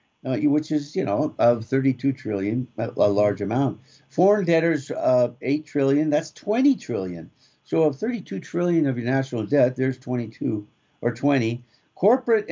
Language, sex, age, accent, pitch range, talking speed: English, male, 60-79, American, 115-155 Hz, 175 wpm